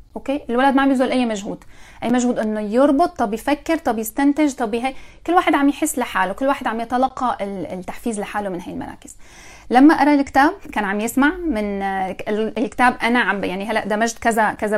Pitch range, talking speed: 205-265 Hz, 185 wpm